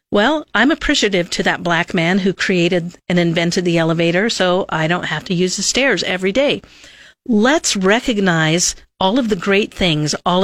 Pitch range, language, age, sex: 175-225 Hz, English, 50-69, female